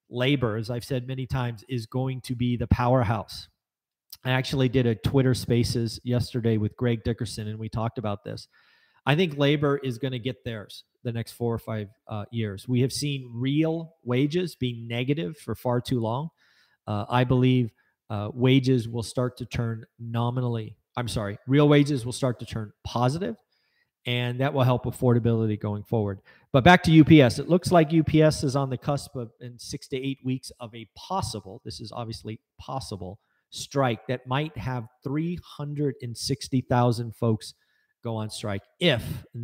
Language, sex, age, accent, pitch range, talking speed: English, male, 40-59, American, 115-140 Hz, 180 wpm